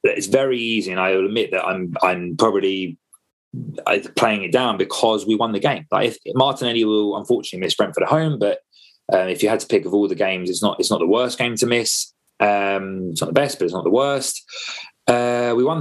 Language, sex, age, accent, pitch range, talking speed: English, male, 20-39, British, 100-125 Hz, 230 wpm